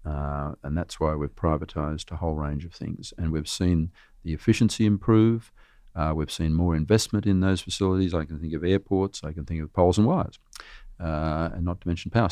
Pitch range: 80-95 Hz